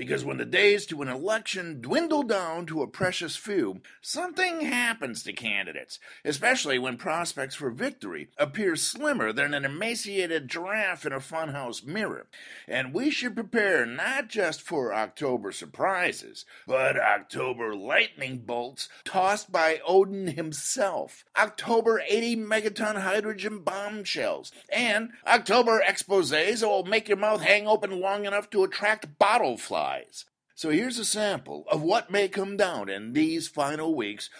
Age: 50-69